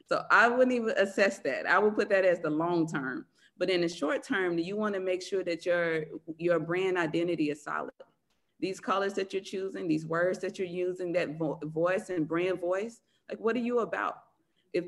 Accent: American